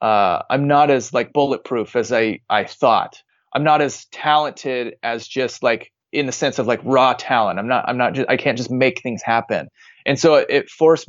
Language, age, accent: English, 30-49, American